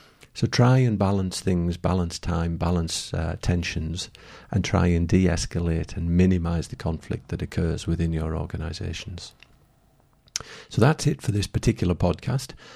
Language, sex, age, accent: English, male, 50-69, British